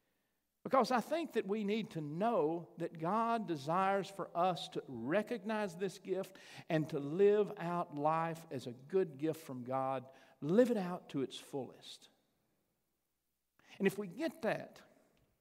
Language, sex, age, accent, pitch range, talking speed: English, male, 50-69, American, 155-215 Hz, 150 wpm